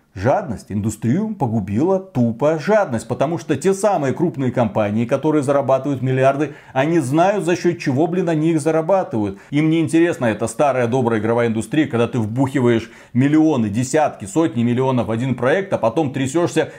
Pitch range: 125-180 Hz